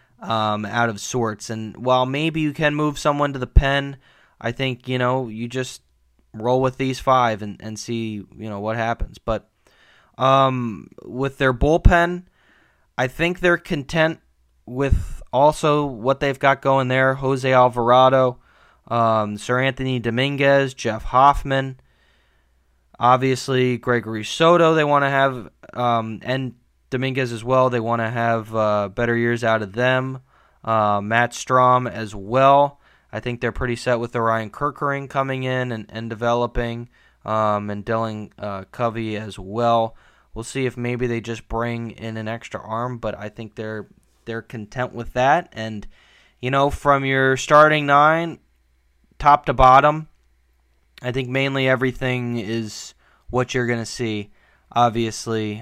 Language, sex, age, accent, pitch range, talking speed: English, male, 20-39, American, 110-135 Hz, 155 wpm